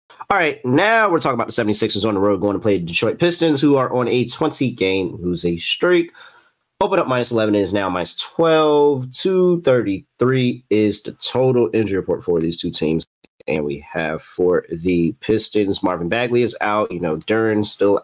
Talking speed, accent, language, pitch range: 195 wpm, American, English, 95-130 Hz